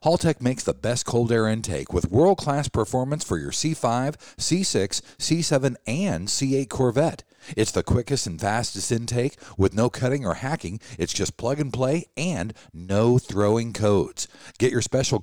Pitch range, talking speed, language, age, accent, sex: 105-145 Hz, 160 wpm, English, 50-69, American, male